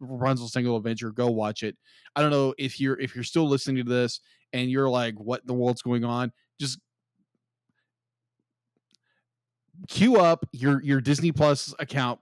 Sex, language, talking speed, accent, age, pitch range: male, English, 160 wpm, American, 20-39, 120-135 Hz